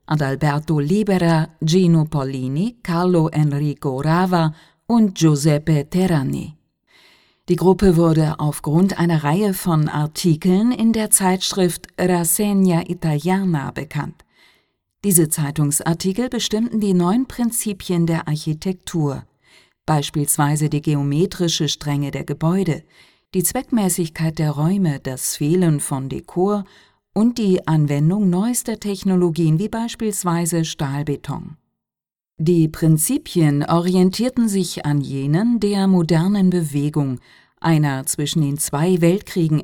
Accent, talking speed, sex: German, 105 wpm, female